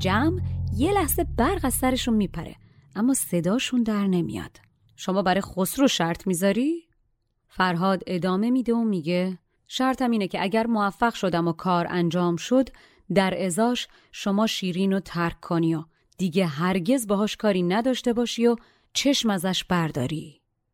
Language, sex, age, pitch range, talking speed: Persian, female, 30-49, 175-230 Hz, 140 wpm